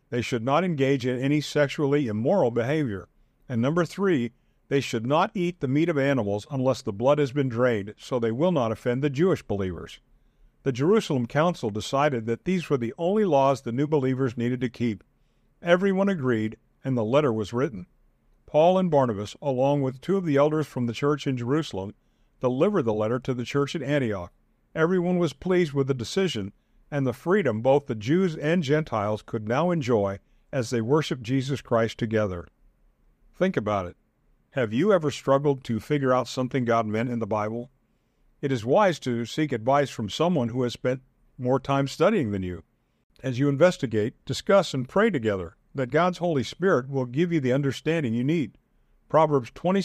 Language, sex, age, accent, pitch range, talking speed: English, male, 50-69, American, 115-150 Hz, 185 wpm